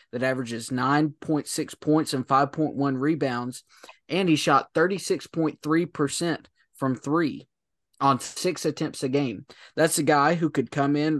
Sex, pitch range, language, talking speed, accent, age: male, 130-150 Hz, English, 135 wpm, American, 20-39